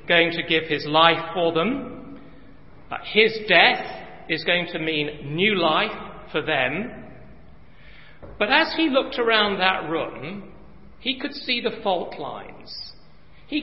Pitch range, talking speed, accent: 160-225 Hz, 135 wpm, British